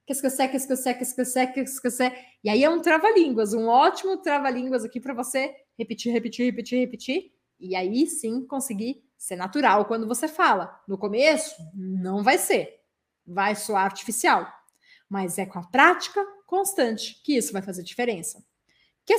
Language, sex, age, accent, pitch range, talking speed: Portuguese, female, 20-39, Brazilian, 210-280 Hz, 160 wpm